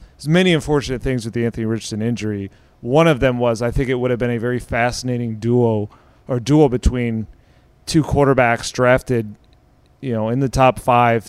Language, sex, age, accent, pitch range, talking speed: English, male, 30-49, American, 115-130 Hz, 185 wpm